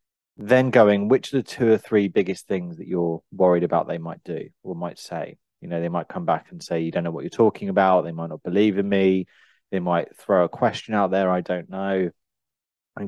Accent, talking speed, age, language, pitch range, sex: British, 240 wpm, 30-49, English, 90-105 Hz, male